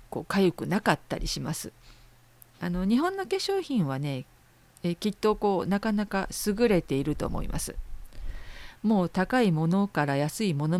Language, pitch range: Japanese, 150-210 Hz